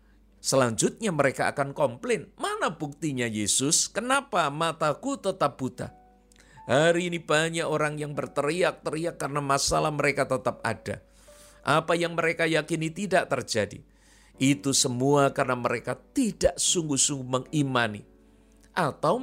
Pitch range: 125-180 Hz